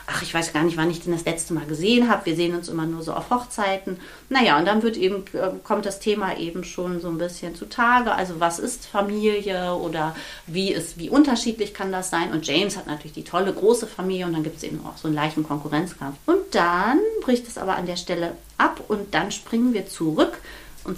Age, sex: 40-59, female